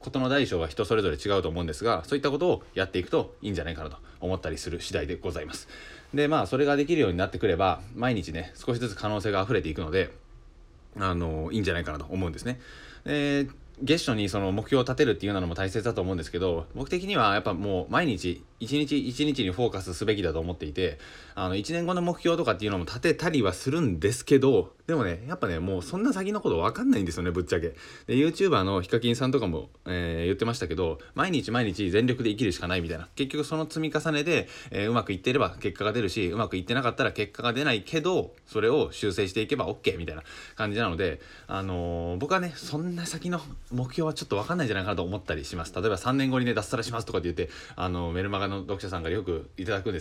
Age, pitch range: 20-39, 90-145 Hz